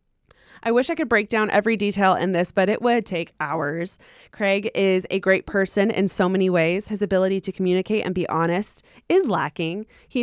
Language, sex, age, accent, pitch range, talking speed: English, female, 20-39, American, 180-225 Hz, 200 wpm